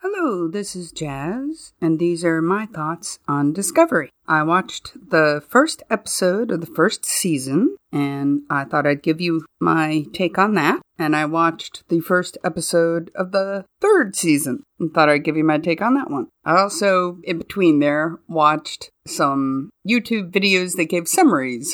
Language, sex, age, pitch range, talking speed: English, female, 50-69, 165-235 Hz, 170 wpm